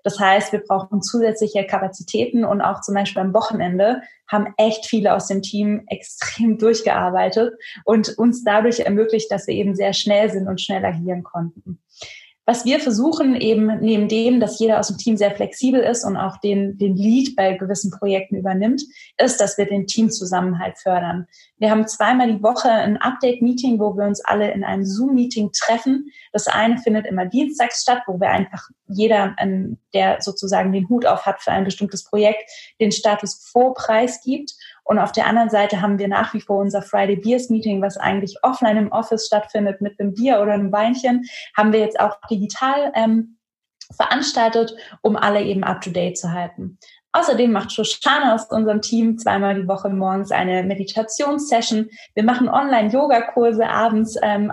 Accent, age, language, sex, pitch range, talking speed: German, 20-39, German, female, 200-230 Hz, 175 wpm